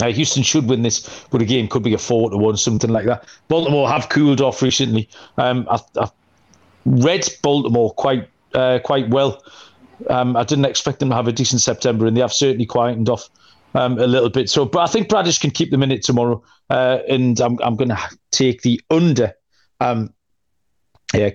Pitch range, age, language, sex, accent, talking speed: 115-140 Hz, 40-59, English, male, British, 190 wpm